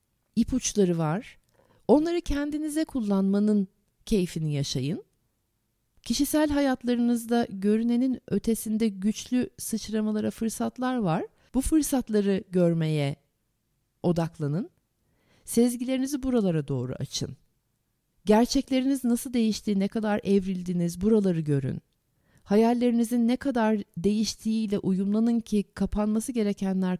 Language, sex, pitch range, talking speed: Turkish, female, 175-225 Hz, 85 wpm